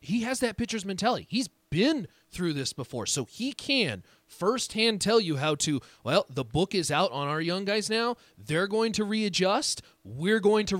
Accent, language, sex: American, English, male